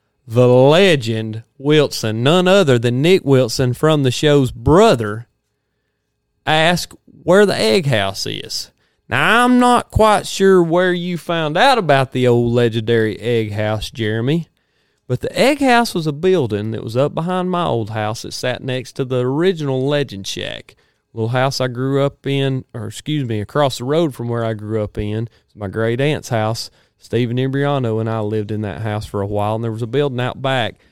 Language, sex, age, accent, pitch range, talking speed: English, male, 30-49, American, 115-145 Hz, 190 wpm